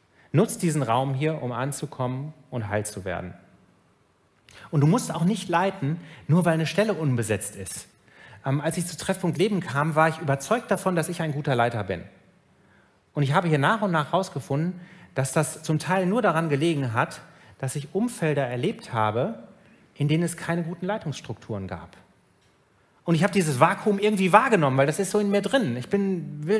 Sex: male